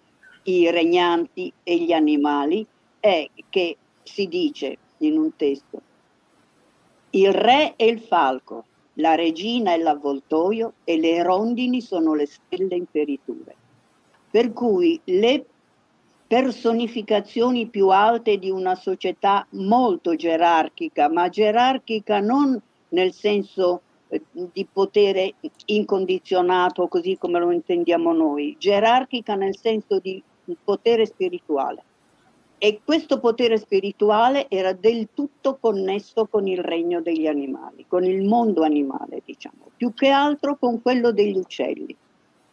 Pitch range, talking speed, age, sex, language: 165-245 Hz, 120 wpm, 50-69, female, Italian